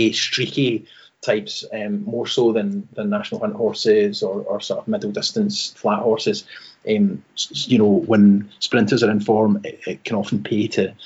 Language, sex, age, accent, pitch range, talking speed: English, male, 30-49, British, 105-145 Hz, 175 wpm